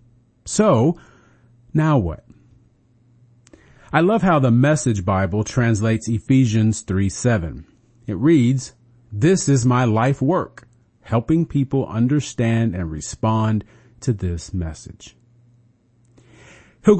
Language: English